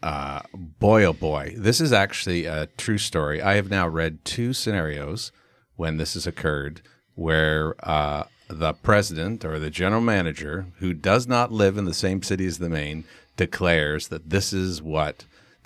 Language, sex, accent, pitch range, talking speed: English, male, American, 85-110 Hz, 175 wpm